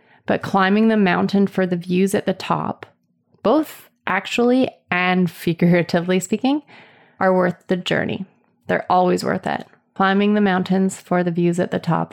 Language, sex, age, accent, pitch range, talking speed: English, female, 20-39, American, 175-200 Hz, 160 wpm